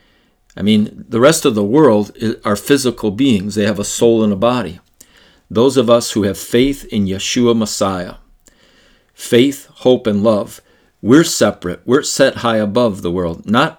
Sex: male